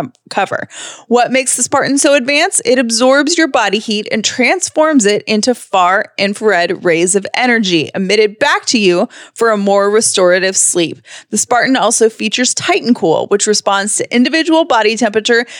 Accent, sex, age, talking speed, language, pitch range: American, female, 30-49, 160 wpm, English, 205-285 Hz